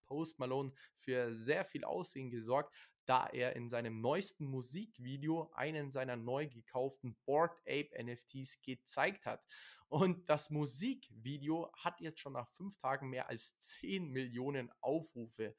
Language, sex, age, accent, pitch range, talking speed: German, male, 20-39, German, 125-165 Hz, 140 wpm